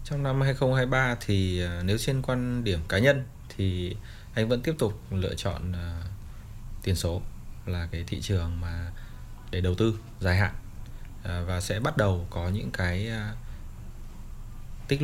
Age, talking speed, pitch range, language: 20-39, 150 wpm, 90-110 Hz, Vietnamese